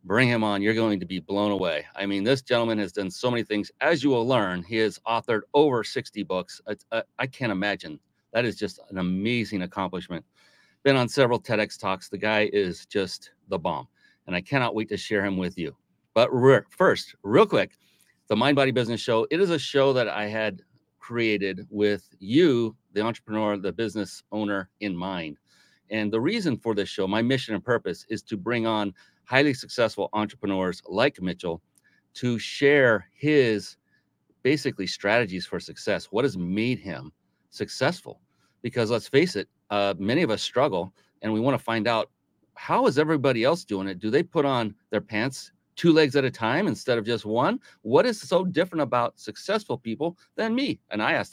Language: English